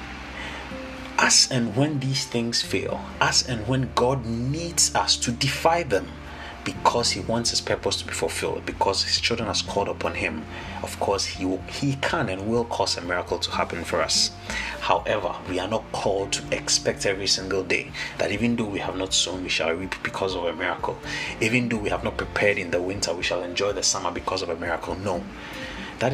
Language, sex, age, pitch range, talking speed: English, male, 30-49, 85-115 Hz, 200 wpm